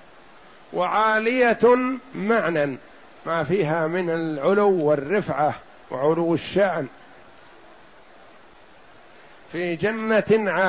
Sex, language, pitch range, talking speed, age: male, Arabic, 155-200 Hz, 60 wpm, 60-79